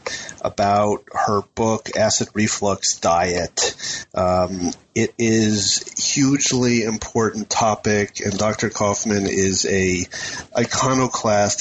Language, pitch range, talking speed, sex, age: English, 95-115 Hz, 100 wpm, male, 30-49